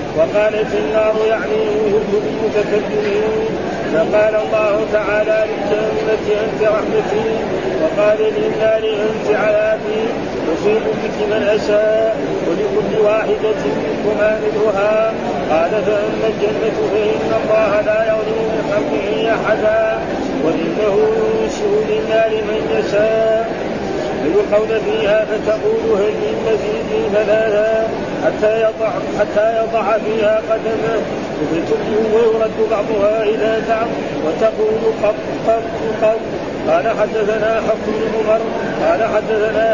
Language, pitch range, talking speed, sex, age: Arabic, 215-220 Hz, 95 wpm, male, 40-59